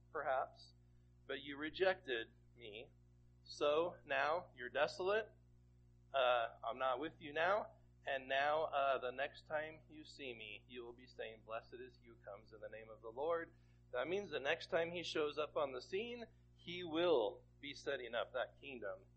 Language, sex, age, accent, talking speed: English, male, 40-59, American, 180 wpm